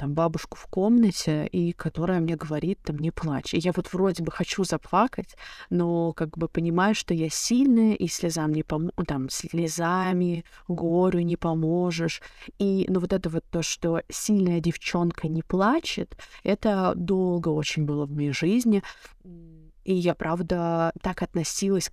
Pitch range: 165-200 Hz